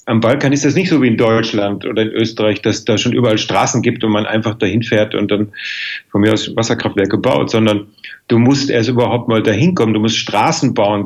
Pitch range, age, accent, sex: 110-135 Hz, 40-59, German, male